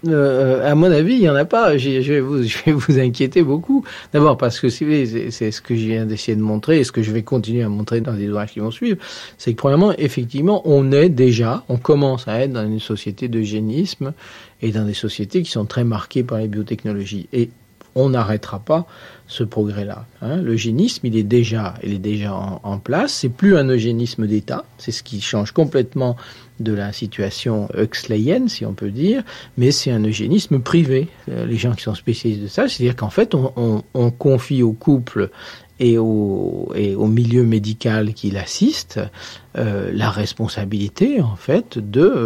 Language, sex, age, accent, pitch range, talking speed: French, male, 50-69, French, 110-135 Hz, 205 wpm